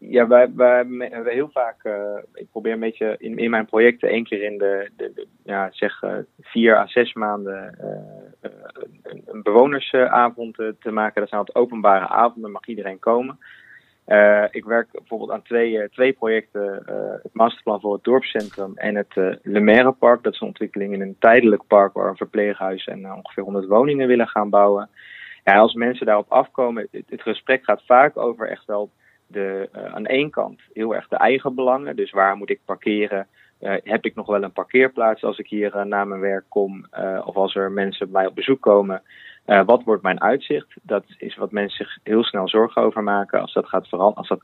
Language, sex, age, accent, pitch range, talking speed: Dutch, male, 20-39, Dutch, 100-120 Hz, 215 wpm